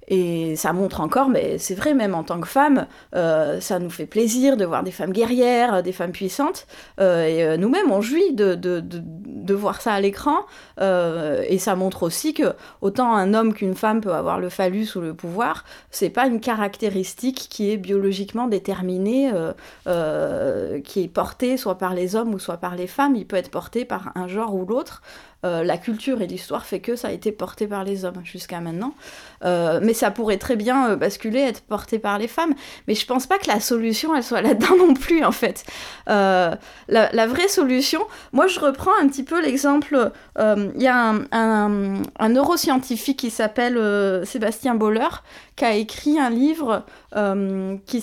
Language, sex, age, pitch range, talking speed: French, female, 30-49, 190-260 Hz, 205 wpm